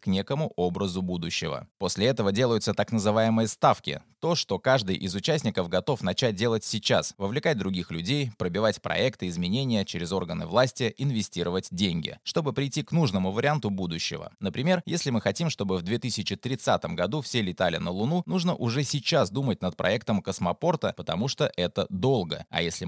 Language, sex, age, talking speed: Russian, male, 20-39, 160 wpm